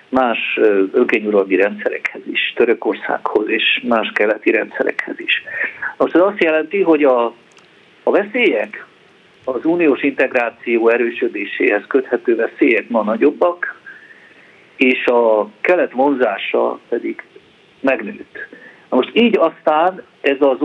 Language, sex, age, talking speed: Hungarian, male, 50-69, 110 wpm